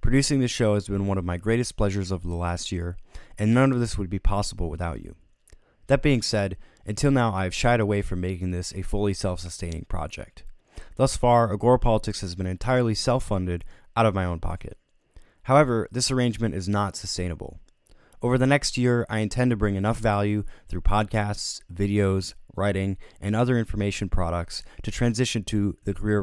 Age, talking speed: 20-39, 185 wpm